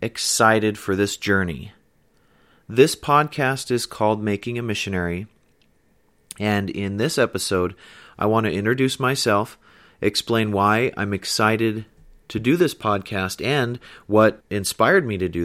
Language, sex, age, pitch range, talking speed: English, male, 30-49, 95-110 Hz, 130 wpm